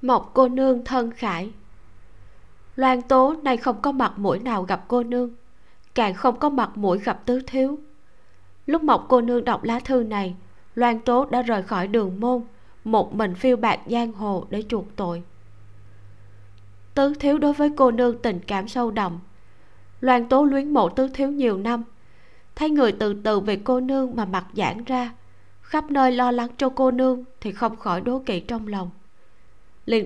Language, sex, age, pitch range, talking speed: Vietnamese, female, 20-39, 205-255 Hz, 185 wpm